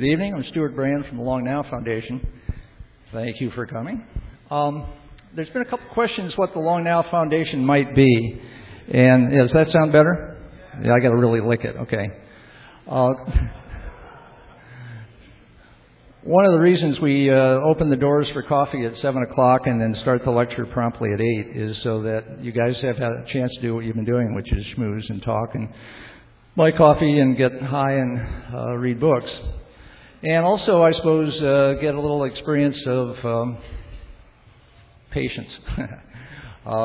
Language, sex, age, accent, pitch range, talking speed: English, male, 50-69, American, 115-140 Hz, 175 wpm